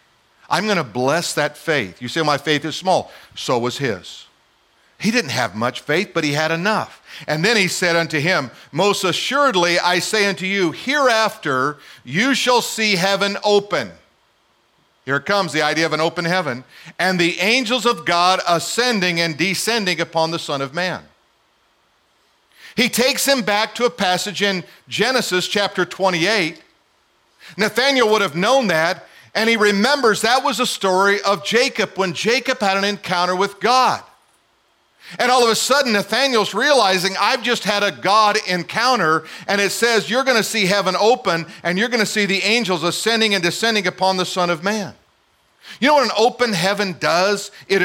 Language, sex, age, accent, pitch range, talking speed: English, male, 50-69, American, 170-220 Hz, 175 wpm